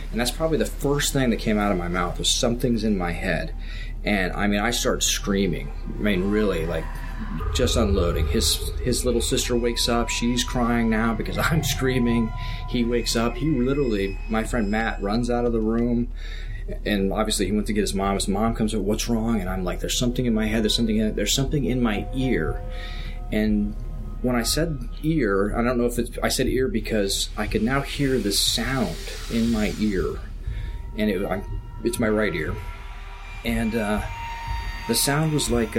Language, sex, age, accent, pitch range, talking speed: English, male, 30-49, American, 100-120 Hz, 200 wpm